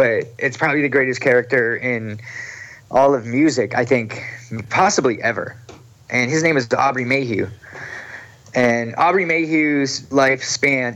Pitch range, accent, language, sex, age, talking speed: 115-140 Hz, American, English, male, 30-49, 130 wpm